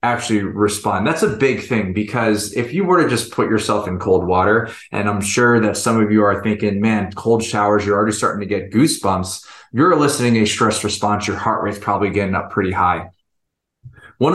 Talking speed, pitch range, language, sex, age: 205 wpm, 100-120 Hz, English, male, 20-39